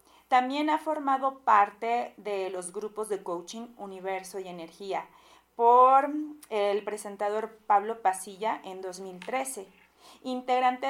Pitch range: 200-235 Hz